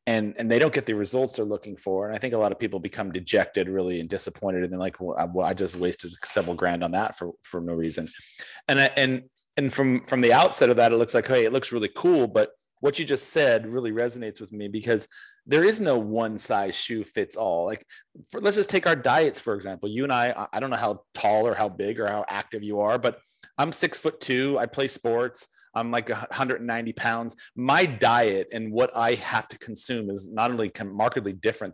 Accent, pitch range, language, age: American, 100-130 Hz, English, 30-49